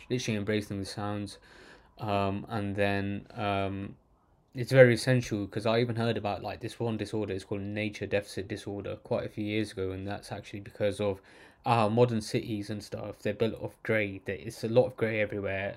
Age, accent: 20-39, British